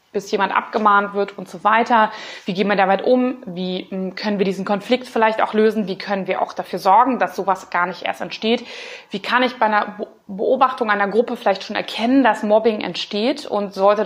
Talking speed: 205 wpm